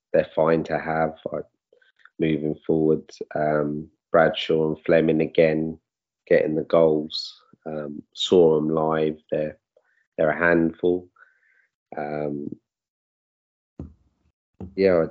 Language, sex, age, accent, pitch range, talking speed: English, male, 30-49, British, 75-80 Hz, 100 wpm